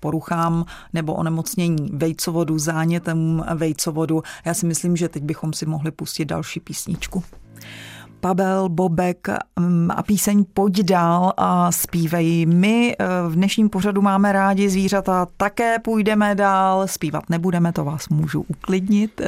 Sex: female